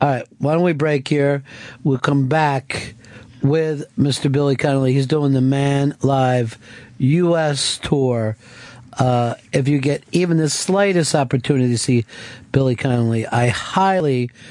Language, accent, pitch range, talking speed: English, American, 120-145 Hz, 145 wpm